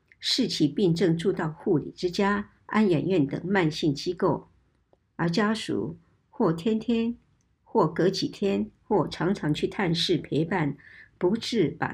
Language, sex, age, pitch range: Chinese, male, 60-79, 160-205 Hz